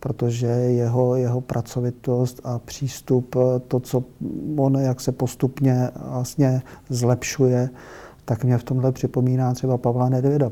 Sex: male